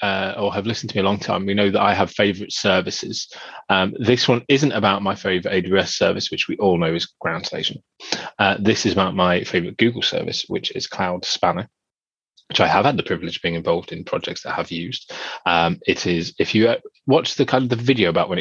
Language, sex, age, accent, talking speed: English, male, 30-49, British, 240 wpm